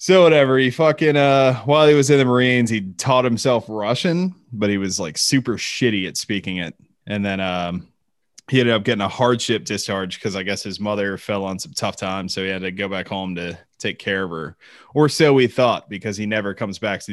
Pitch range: 95-120 Hz